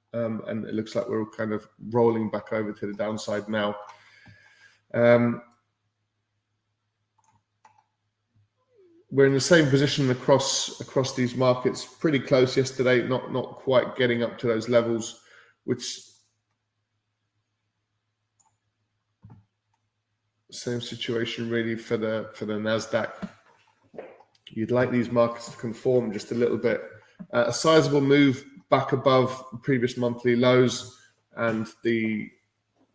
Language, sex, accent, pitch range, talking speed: English, male, British, 110-125 Hz, 120 wpm